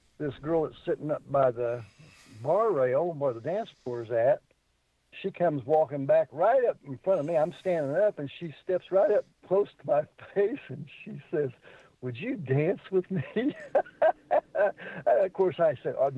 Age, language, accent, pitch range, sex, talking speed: 60-79, English, American, 140-210 Hz, male, 180 wpm